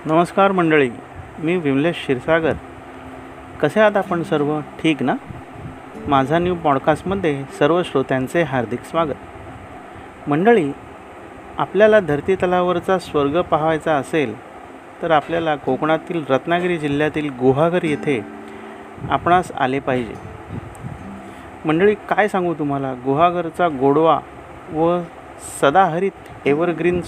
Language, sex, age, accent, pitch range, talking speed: Marathi, male, 40-59, native, 140-180 Hz, 95 wpm